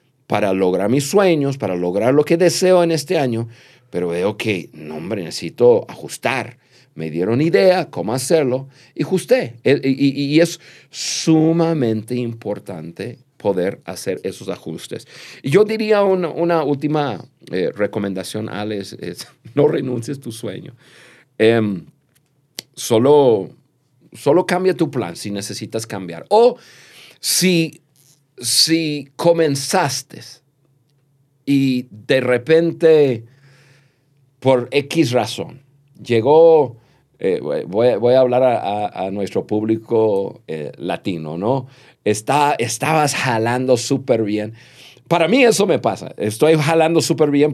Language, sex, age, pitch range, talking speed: Spanish, male, 50-69, 120-155 Hz, 120 wpm